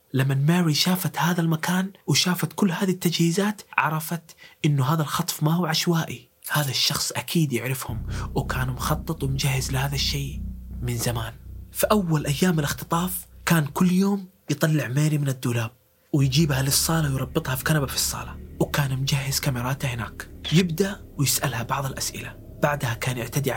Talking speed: 145 wpm